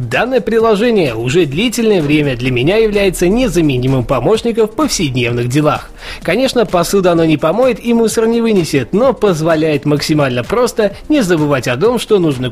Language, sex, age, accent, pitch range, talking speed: Russian, male, 20-39, native, 140-215 Hz, 155 wpm